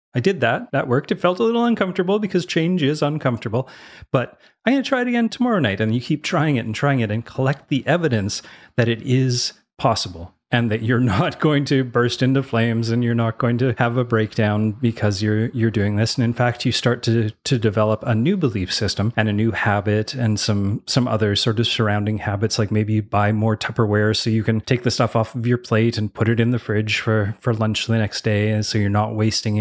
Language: English